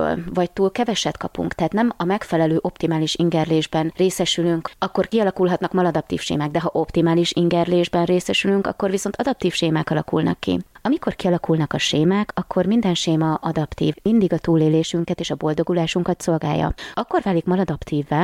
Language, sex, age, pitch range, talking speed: Hungarian, female, 20-39, 160-195 Hz, 145 wpm